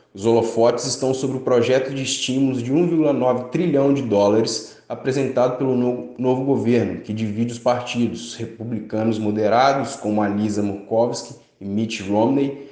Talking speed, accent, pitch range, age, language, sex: 135 wpm, Brazilian, 115-135 Hz, 20-39, Portuguese, male